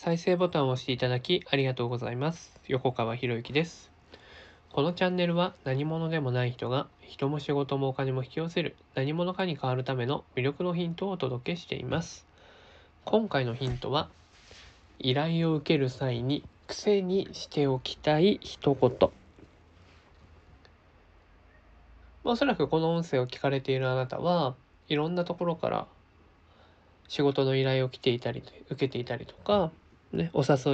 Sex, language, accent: male, Japanese, native